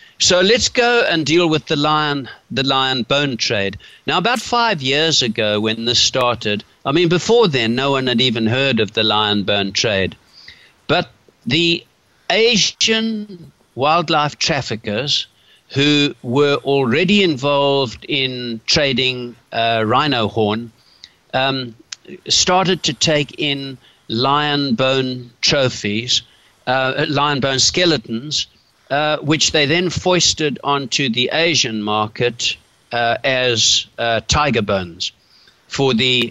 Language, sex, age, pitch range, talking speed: English, male, 60-79, 115-155 Hz, 125 wpm